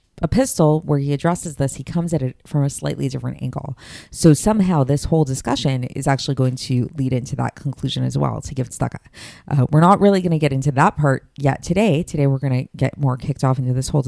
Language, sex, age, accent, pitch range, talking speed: English, female, 30-49, American, 130-160 Hz, 235 wpm